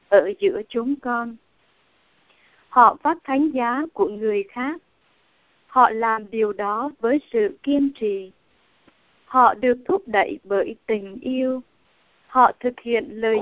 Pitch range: 235-300 Hz